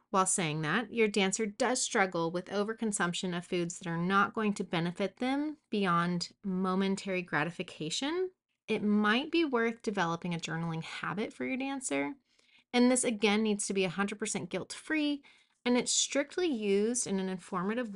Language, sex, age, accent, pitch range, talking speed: English, female, 30-49, American, 180-225 Hz, 155 wpm